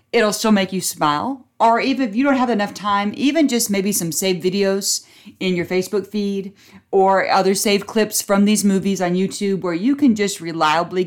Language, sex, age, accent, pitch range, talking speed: English, female, 40-59, American, 175-215 Hz, 200 wpm